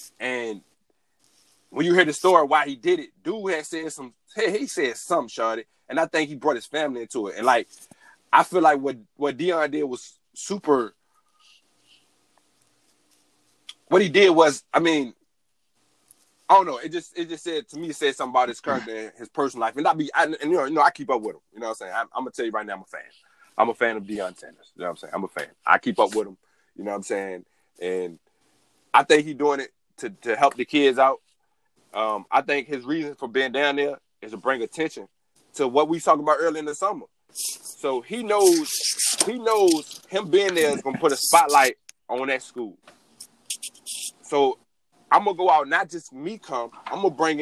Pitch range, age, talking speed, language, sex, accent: 125-175 Hz, 20-39, 235 wpm, English, male, American